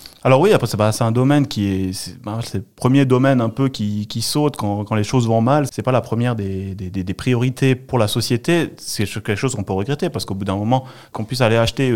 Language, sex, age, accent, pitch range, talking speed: French, male, 30-49, French, 105-130 Hz, 250 wpm